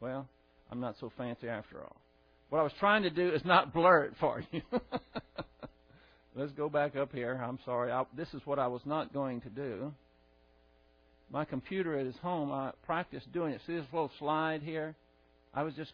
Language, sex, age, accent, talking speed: English, male, 60-79, American, 200 wpm